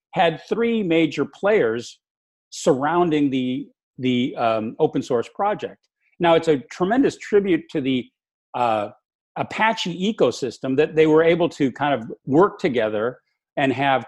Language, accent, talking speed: English, American, 135 wpm